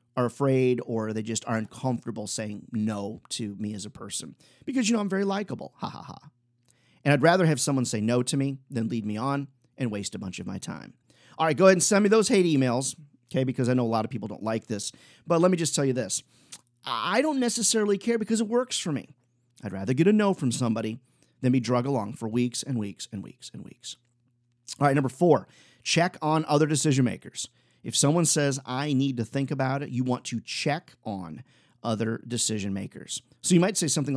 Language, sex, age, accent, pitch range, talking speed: English, male, 40-59, American, 115-150 Hz, 230 wpm